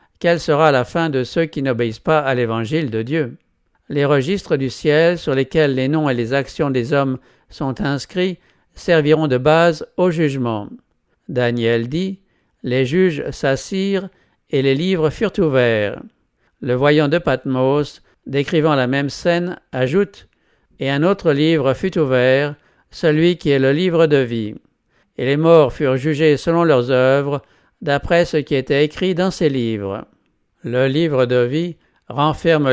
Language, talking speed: English, 160 wpm